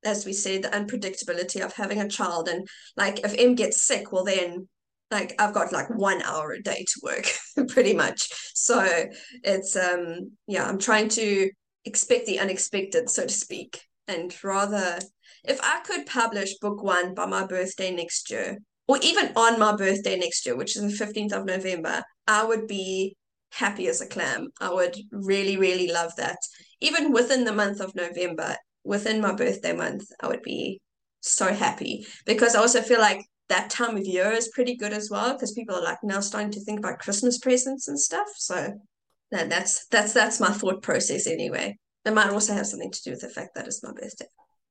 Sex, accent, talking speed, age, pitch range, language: female, Australian, 195 wpm, 20-39, 190-245 Hz, English